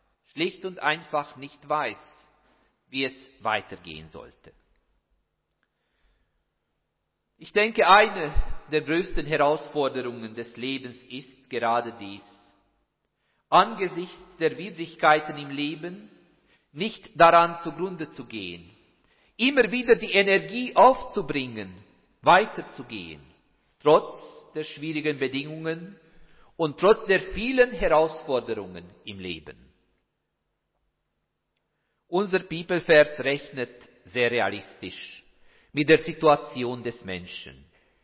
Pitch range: 130-185 Hz